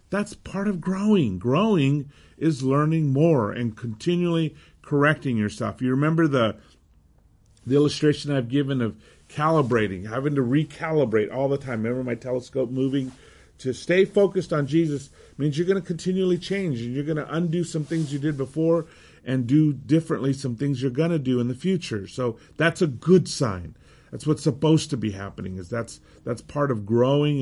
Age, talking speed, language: 40-59, 175 wpm, English